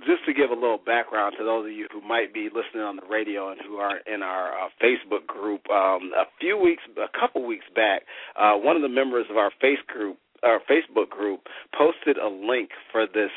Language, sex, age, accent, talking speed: English, male, 40-59, American, 225 wpm